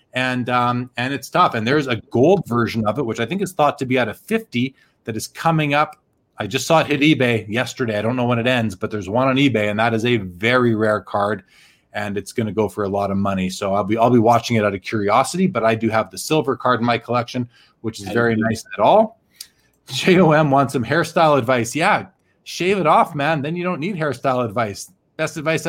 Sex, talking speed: male, 245 wpm